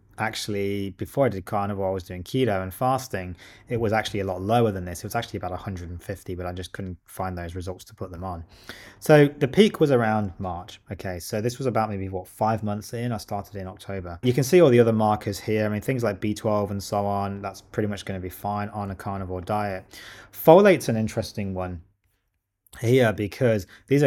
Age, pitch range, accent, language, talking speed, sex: 20-39, 95-115 Hz, British, English, 220 wpm, male